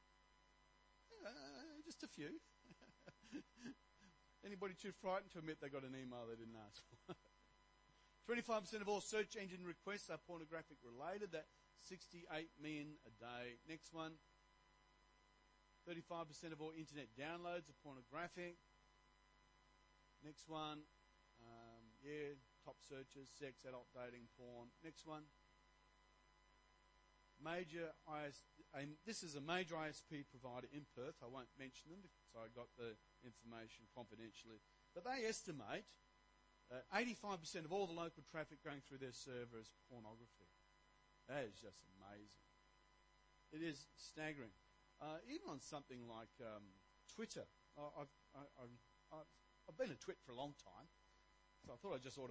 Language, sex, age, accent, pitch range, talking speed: English, male, 40-59, Australian, 125-170 Hz, 140 wpm